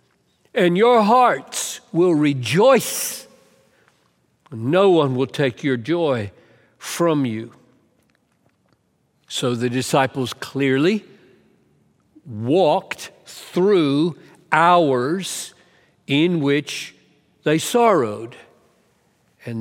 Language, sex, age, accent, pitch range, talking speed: English, male, 60-79, American, 120-170 Hz, 75 wpm